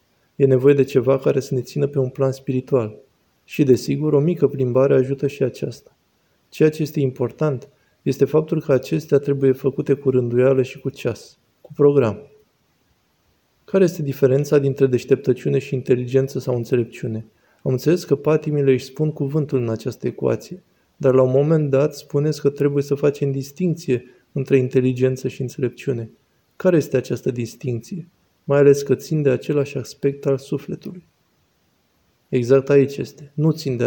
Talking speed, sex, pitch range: 160 wpm, male, 130-145 Hz